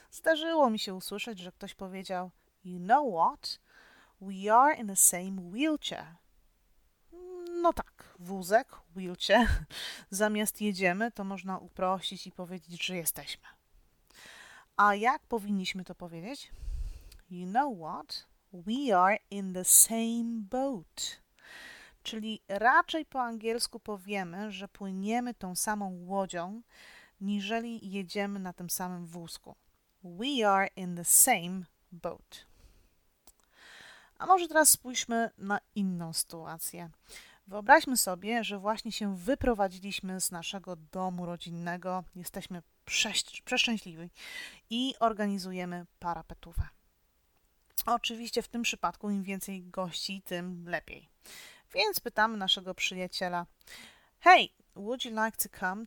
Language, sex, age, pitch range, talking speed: Polish, female, 30-49, 180-230 Hz, 115 wpm